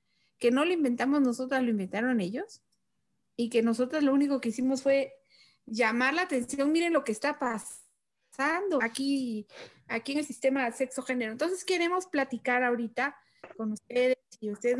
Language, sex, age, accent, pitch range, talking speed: Spanish, female, 40-59, Mexican, 230-275 Hz, 155 wpm